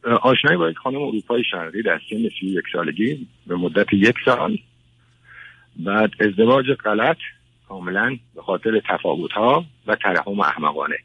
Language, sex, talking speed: Persian, male, 140 wpm